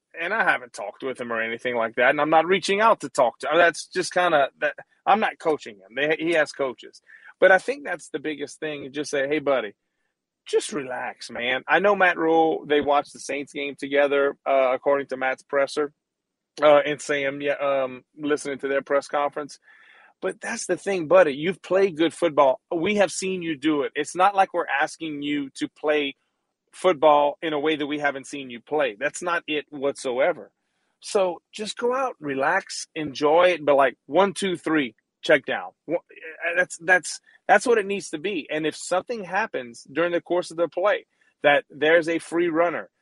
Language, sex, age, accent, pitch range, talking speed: English, male, 30-49, American, 145-185 Hz, 205 wpm